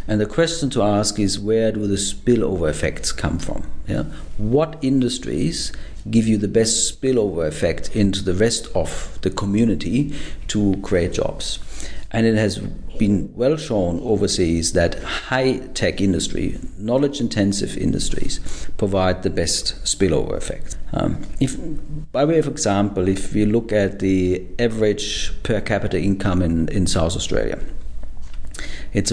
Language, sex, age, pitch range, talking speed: English, male, 50-69, 90-115 Hz, 145 wpm